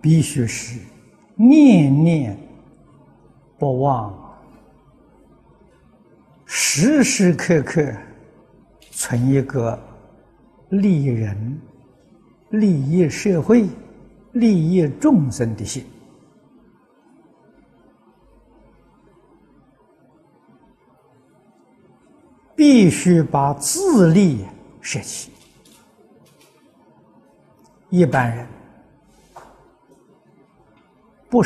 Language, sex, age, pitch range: Chinese, male, 60-79, 130-220 Hz